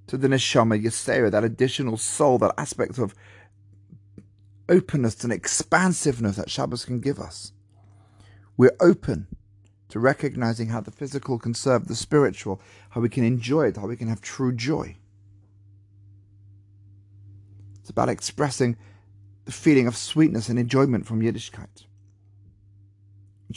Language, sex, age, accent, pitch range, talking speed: English, male, 40-59, British, 100-120 Hz, 130 wpm